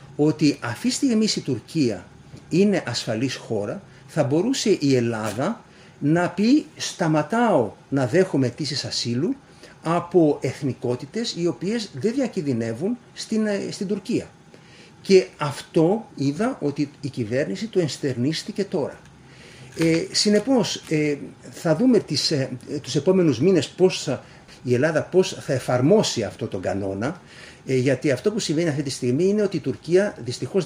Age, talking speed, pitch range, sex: 50-69, 125 wpm, 130-185 Hz, male